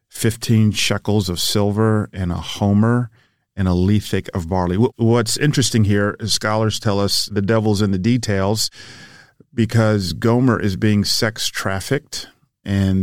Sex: male